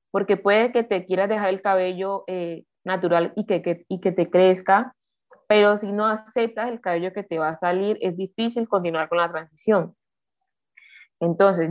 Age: 20-39